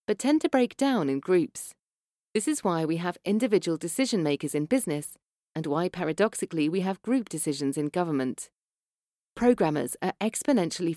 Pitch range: 165-240 Hz